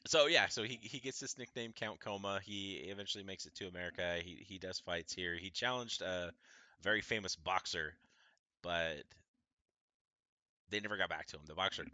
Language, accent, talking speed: English, American, 180 wpm